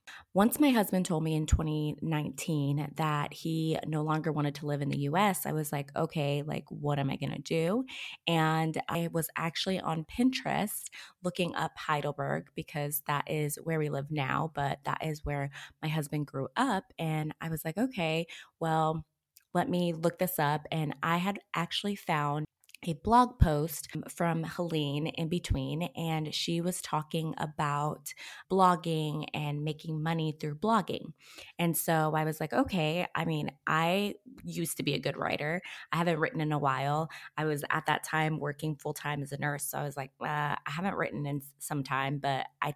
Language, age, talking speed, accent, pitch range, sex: English, 20-39, 180 wpm, American, 150-175 Hz, female